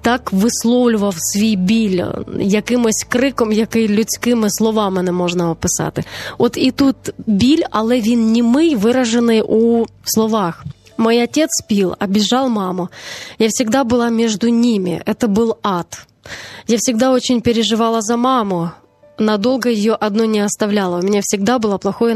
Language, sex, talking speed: Ukrainian, female, 140 wpm